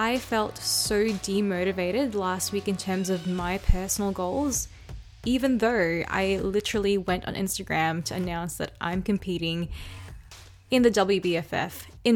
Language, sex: English, female